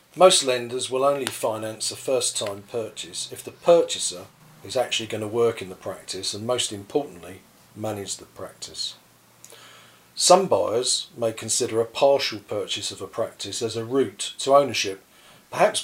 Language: English